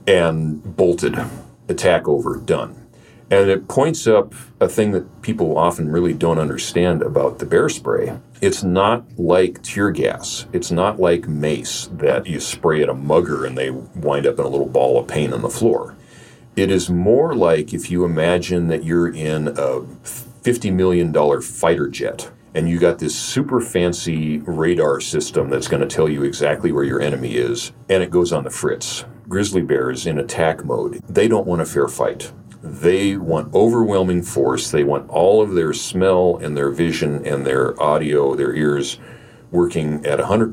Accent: American